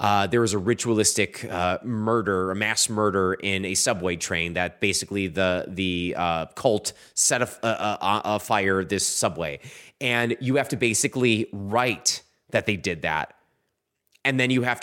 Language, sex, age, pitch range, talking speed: English, male, 20-39, 95-130 Hz, 175 wpm